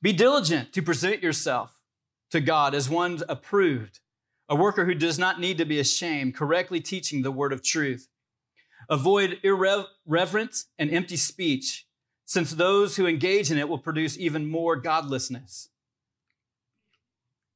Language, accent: English, American